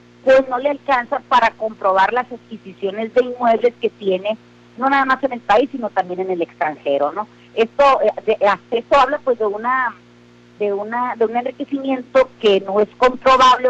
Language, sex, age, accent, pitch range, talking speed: Spanish, female, 40-59, Mexican, 195-245 Hz, 175 wpm